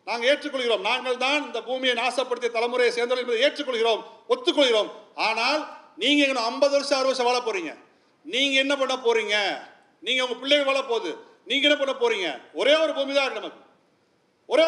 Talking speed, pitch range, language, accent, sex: 160 wpm, 230-315 Hz, Tamil, native, male